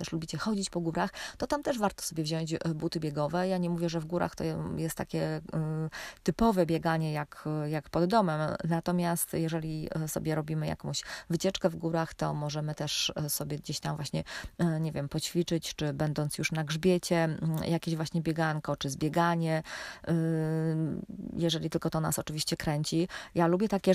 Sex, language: female, Polish